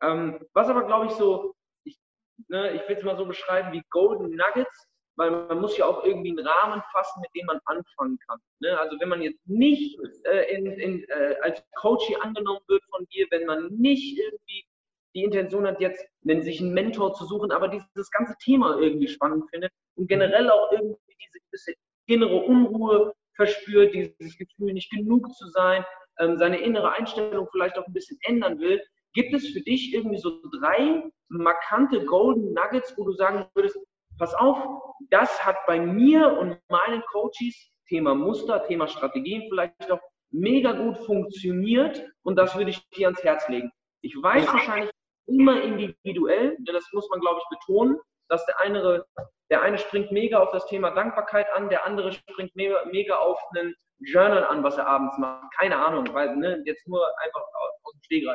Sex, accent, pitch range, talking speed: male, German, 180-255 Hz, 175 wpm